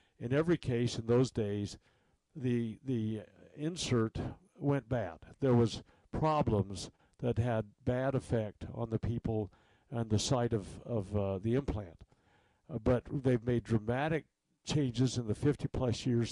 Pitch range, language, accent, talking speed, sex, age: 115-155 Hz, English, American, 145 wpm, male, 60-79